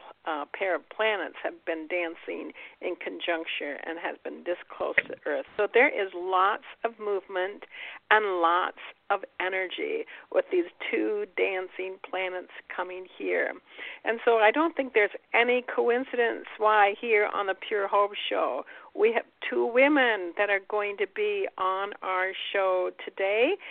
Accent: American